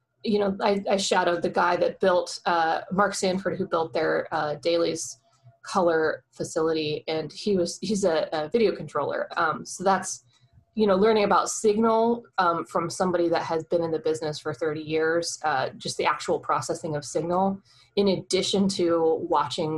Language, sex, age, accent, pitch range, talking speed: English, female, 20-39, American, 155-195 Hz, 175 wpm